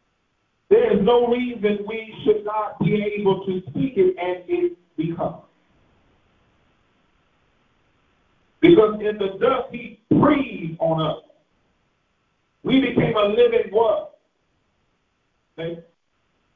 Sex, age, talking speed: male, 50-69, 105 wpm